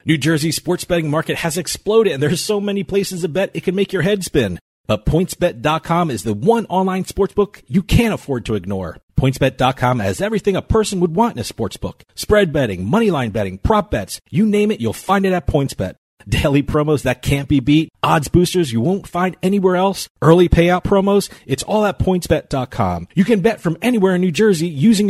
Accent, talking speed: American, 210 wpm